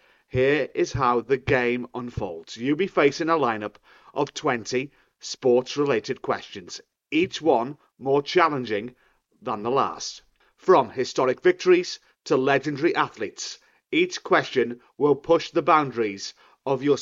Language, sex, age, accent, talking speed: English, male, 40-59, British, 130 wpm